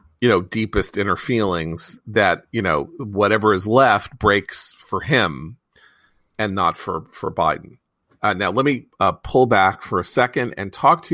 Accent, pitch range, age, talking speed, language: American, 105-140 Hz, 40-59, 170 wpm, English